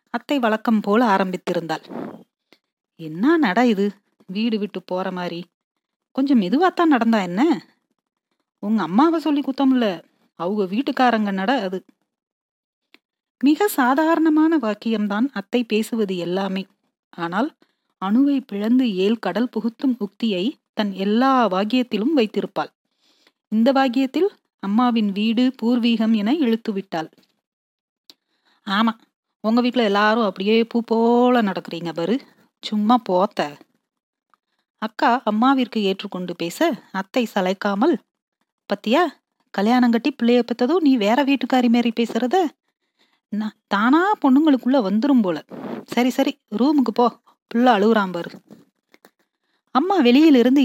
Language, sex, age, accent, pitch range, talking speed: Tamil, female, 30-49, native, 205-270 Hz, 105 wpm